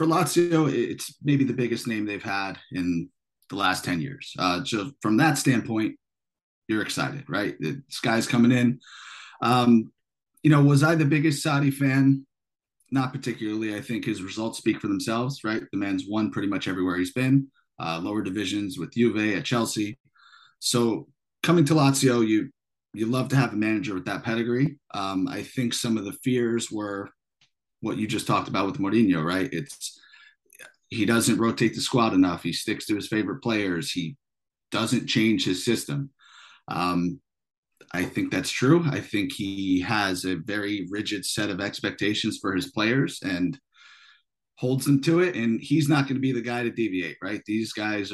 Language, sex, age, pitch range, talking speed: English, male, 30-49, 100-135 Hz, 180 wpm